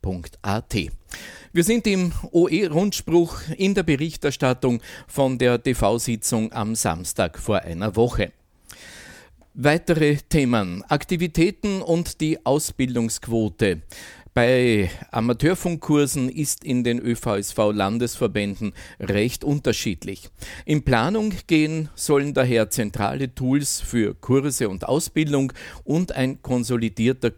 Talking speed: 95 wpm